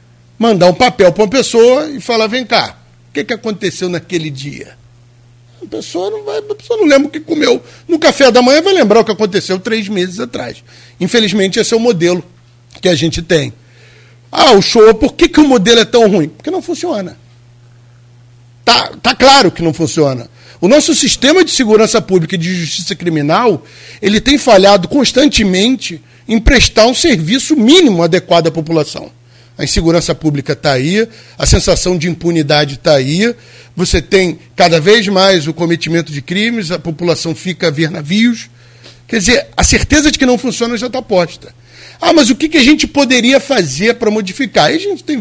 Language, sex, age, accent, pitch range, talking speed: Portuguese, male, 50-69, Brazilian, 160-235 Hz, 185 wpm